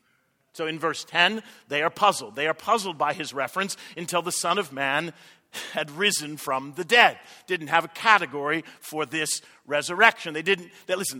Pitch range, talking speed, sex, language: 180-225 Hz, 190 wpm, male, English